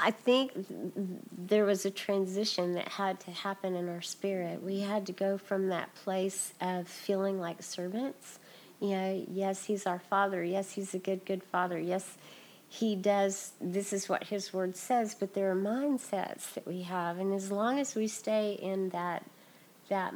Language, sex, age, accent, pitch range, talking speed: English, female, 40-59, American, 185-210 Hz, 180 wpm